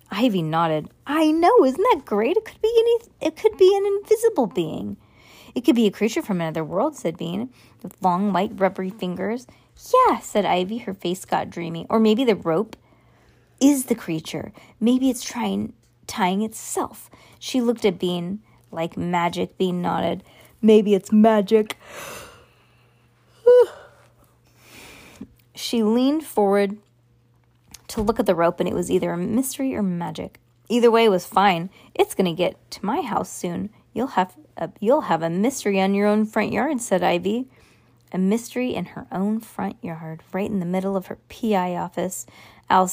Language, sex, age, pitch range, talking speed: English, female, 20-39, 180-240 Hz, 165 wpm